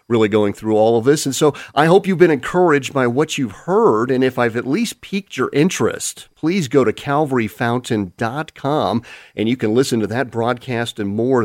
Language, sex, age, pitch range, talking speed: English, male, 40-59, 115-150 Hz, 200 wpm